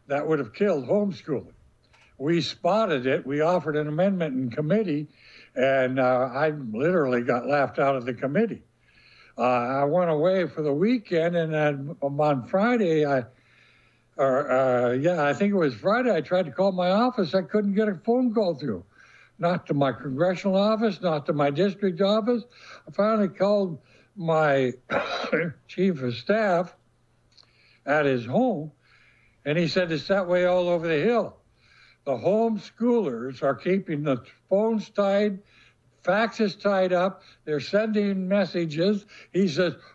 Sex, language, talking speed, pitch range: male, English, 155 wpm, 145-205 Hz